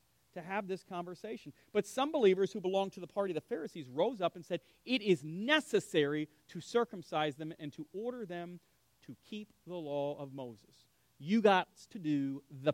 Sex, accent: male, American